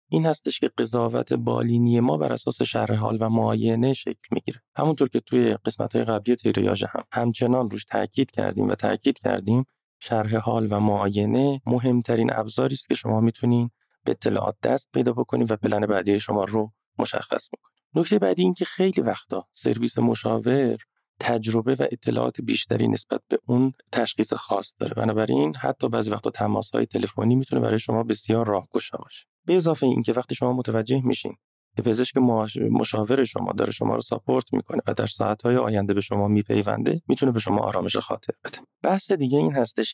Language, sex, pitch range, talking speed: Persian, male, 105-125 Hz, 170 wpm